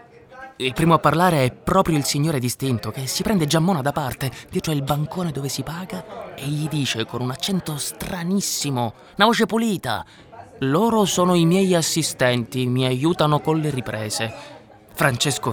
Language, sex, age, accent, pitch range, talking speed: Italian, male, 20-39, native, 130-185 Hz, 160 wpm